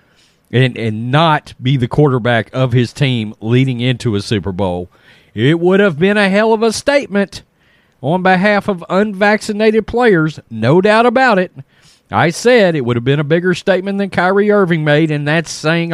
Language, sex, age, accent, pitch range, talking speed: English, male, 40-59, American, 130-185 Hz, 180 wpm